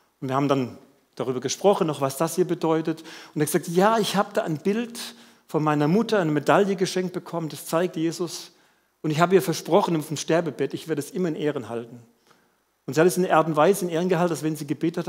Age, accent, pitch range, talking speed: 50-69, German, 150-185 Hz, 230 wpm